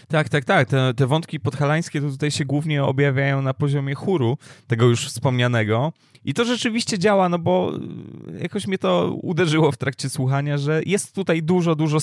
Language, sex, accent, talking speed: Polish, male, native, 180 wpm